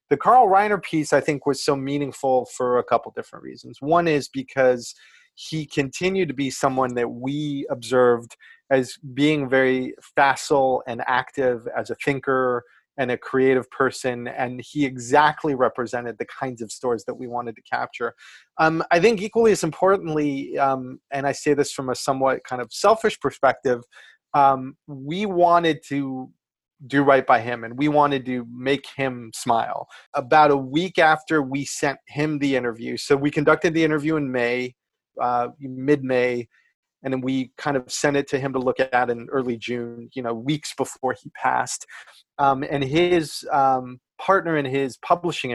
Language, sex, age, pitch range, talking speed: English, male, 30-49, 125-150 Hz, 175 wpm